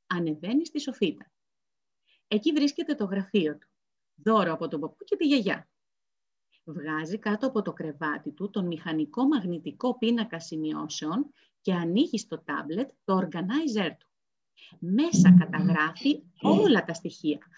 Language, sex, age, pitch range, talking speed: Greek, female, 30-49, 175-285 Hz, 130 wpm